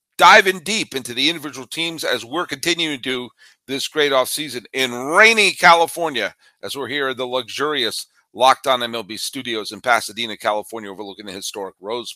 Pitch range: 120-160 Hz